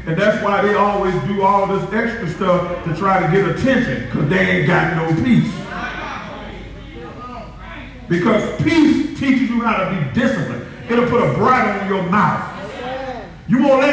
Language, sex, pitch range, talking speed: English, male, 180-250 Hz, 170 wpm